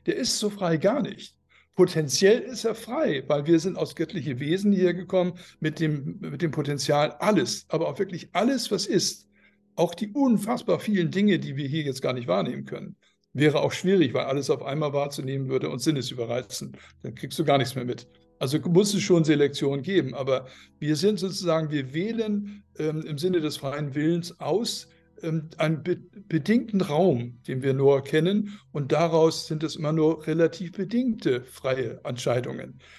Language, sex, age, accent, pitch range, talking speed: German, male, 60-79, German, 140-190 Hz, 180 wpm